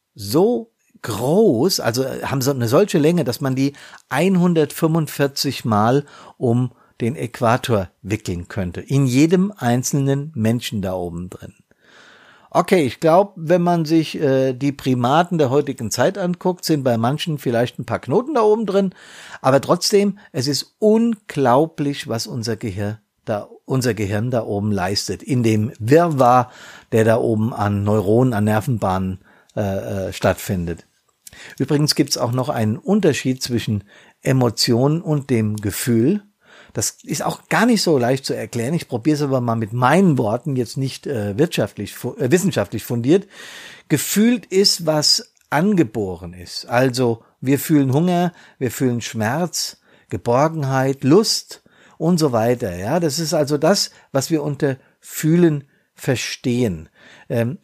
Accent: German